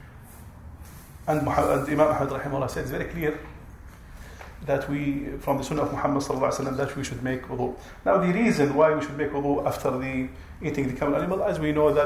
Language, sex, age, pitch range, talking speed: English, male, 40-59, 90-140 Hz, 195 wpm